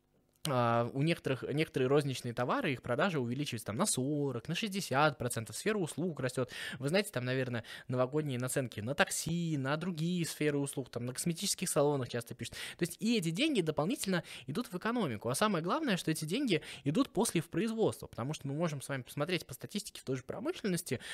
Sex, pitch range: male, 125-175 Hz